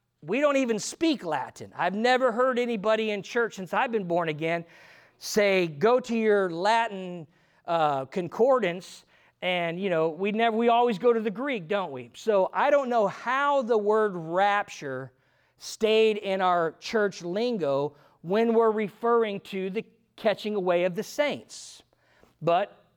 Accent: American